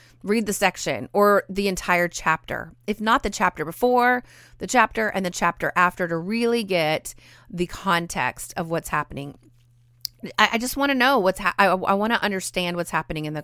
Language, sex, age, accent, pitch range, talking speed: English, female, 30-49, American, 165-215 Hz, 190 wpm